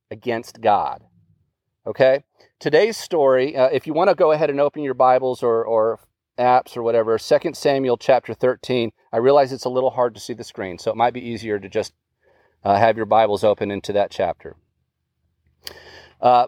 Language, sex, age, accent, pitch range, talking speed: English, male, 40-59, American, 120-170 Hz, 185 wpm